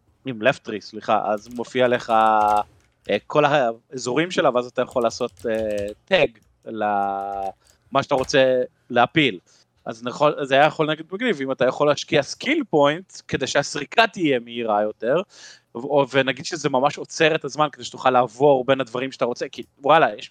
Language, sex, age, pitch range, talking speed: Hebrew, male, 30-49, 120-155 Hz, 165 wpm